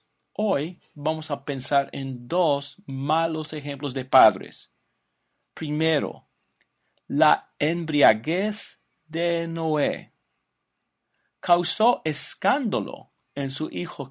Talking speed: 85 wpm